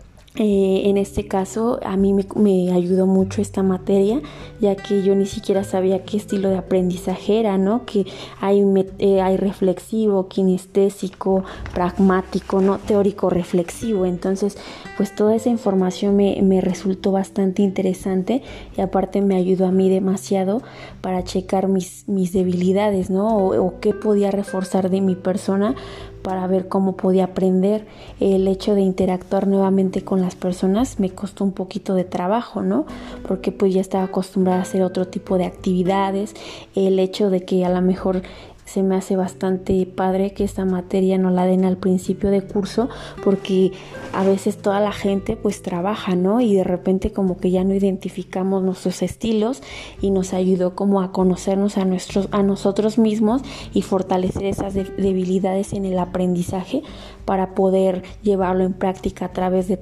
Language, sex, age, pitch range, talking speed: Spanish, female, 20-39, 185-200 Hz, 165 wpm